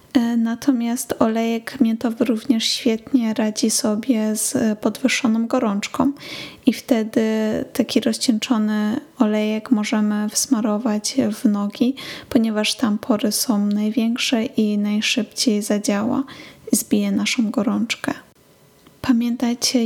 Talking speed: 95 wpm